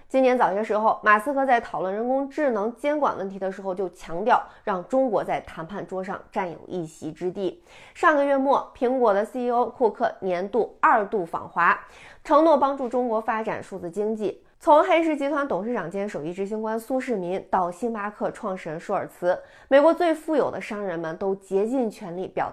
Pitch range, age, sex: 190-260 Hz, 20-39, female